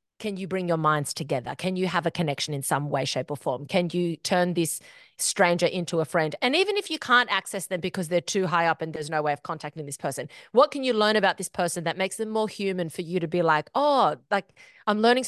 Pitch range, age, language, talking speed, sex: 175-240 Hz, 30-49, English, 260 wpm, female